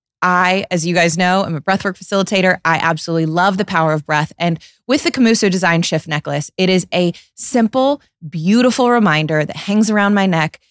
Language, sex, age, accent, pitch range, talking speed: English, female, 20-39, American, 165-220 Hz, 190 wpm